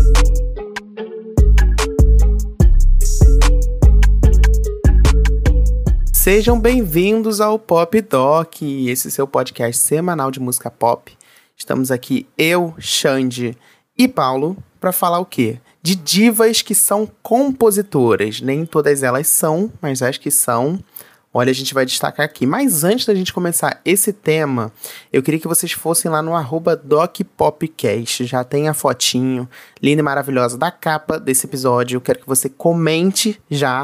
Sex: male